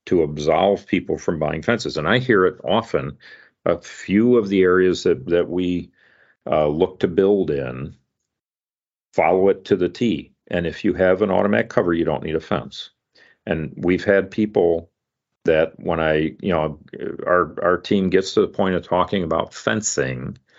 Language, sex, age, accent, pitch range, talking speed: English, male, 50-69, American, 75-90 Hz, 180 wpm